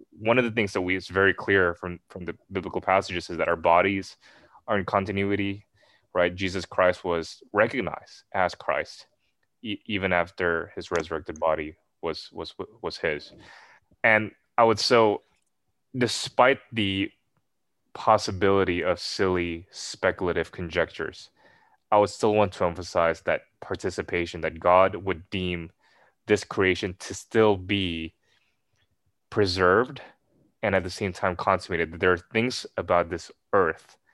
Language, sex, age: English, male, 20-39